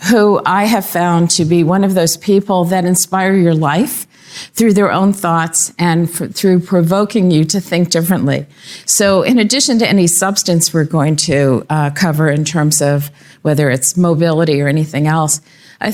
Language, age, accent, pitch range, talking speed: English, 50-69, American, 160-190 Hz, 175 wpm